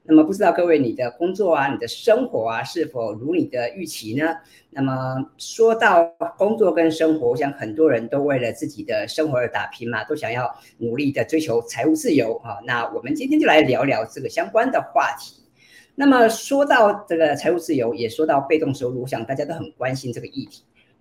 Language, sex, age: Chinese, female, 50-69